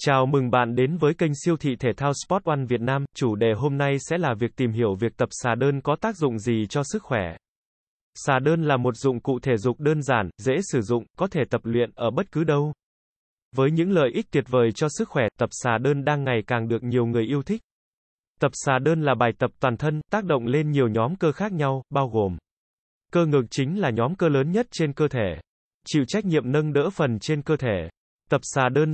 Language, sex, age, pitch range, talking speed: Vietnamese, male, 20-39, 120-160 Hz, 240 wpm